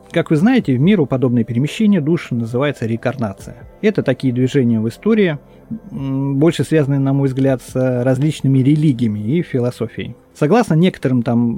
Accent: native